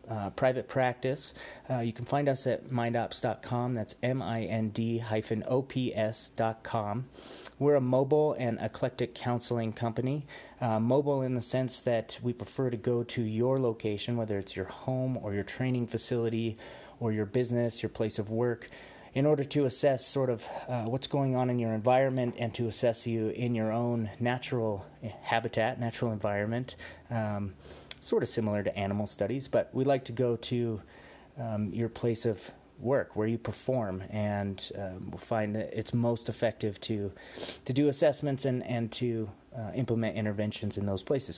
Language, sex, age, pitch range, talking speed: English, male, 30-49, 110-130 Hz, 160 wpm